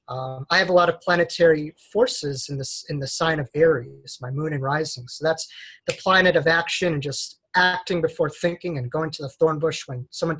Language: English